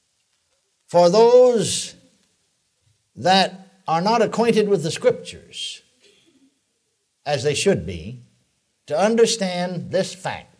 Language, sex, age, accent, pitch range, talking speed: English, male, 60-79, American, 155-215 Hz, 95 wpm